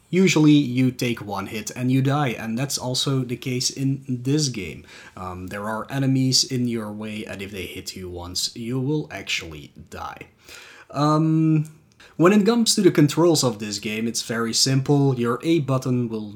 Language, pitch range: English, 110-150 Hz